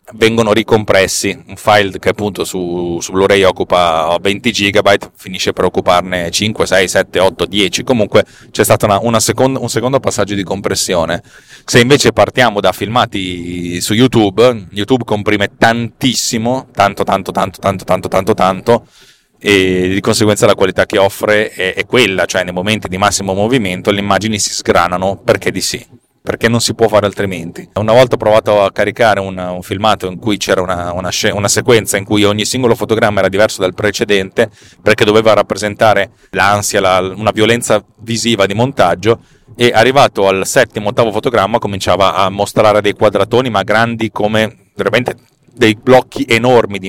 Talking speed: 160 wpm